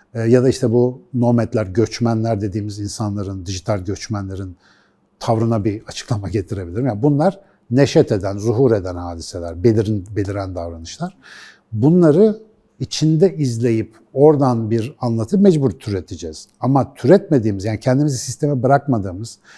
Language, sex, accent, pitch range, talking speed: Turkish, male, native, 105-140 Hz, 115 wpm